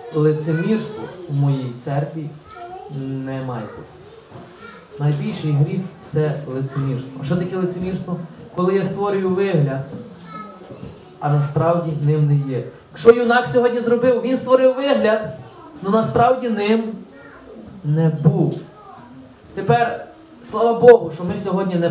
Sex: male